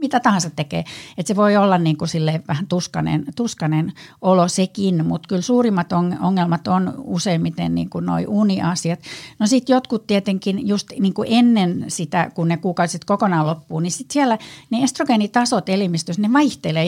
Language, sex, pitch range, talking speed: Finnish, female, 165-205 Hz, 155 wpm